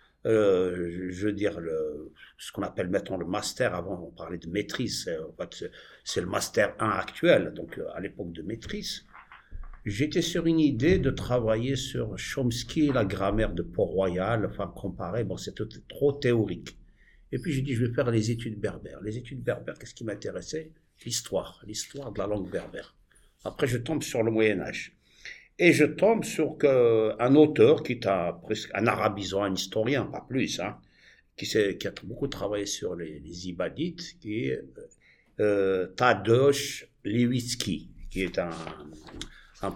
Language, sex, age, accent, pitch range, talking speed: English, male, 60-79, French, 95-135 Hz, 170 wpm